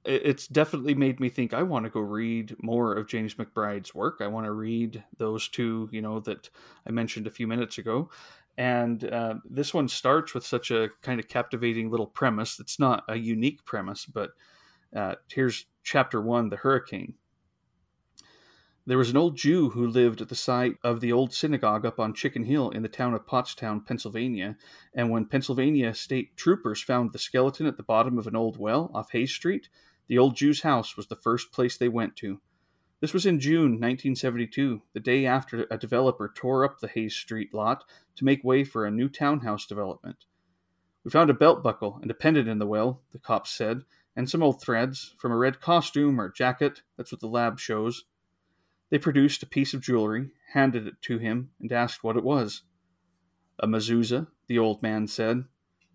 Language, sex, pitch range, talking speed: English, male, 110-135 Hz, 195 wpm